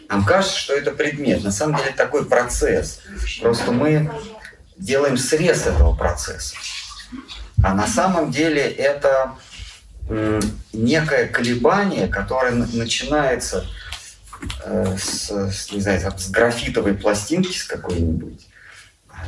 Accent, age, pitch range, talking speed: native, 30-49, 95-145 Hz, 105 wpm